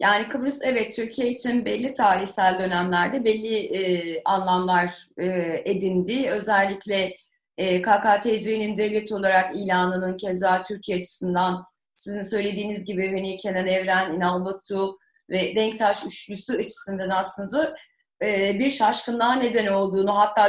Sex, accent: female, native